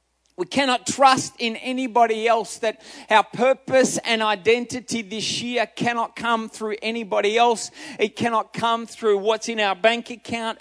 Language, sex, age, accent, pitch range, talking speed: English, male, 30-49, Australian, 230-275 Hz, 155 wpm